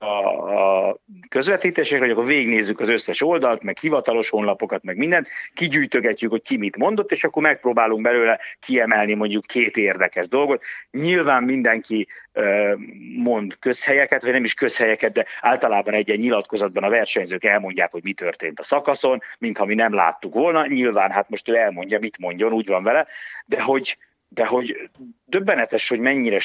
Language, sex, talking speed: Hungarian, male, 155 wpm